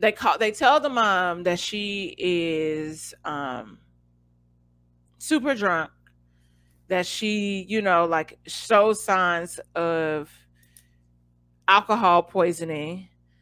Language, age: English, 30-49